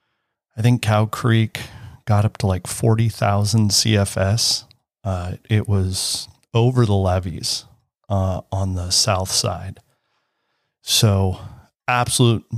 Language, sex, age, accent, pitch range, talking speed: English, male, 40-59, American, 95-110 Hz, 110 wpm